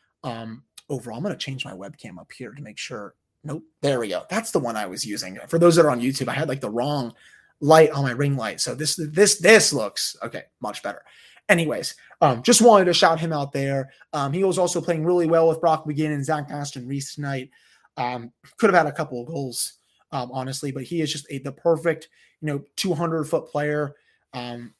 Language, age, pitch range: English, 20-39, 135-170 Hz